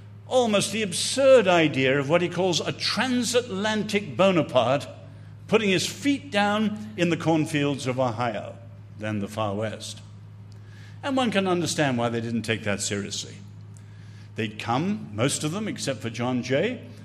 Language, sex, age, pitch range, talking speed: English, male, 60-79, 110-180 Hz, 150 wpm